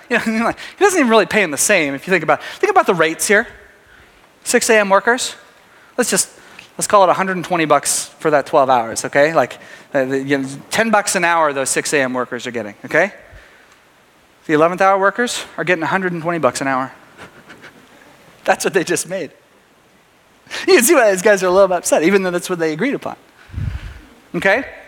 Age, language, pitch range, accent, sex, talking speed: 30-49, English, 175-275 Hz, American, male, 205 wpm